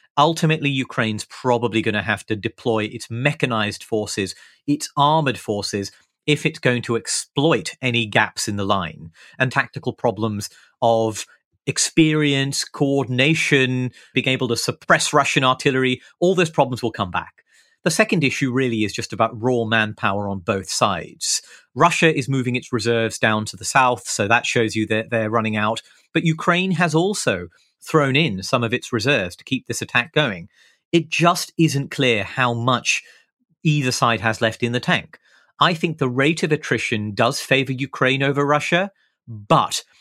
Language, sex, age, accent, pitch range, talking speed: English, male, 30-49, British, 115-150 Hz, 165 wpm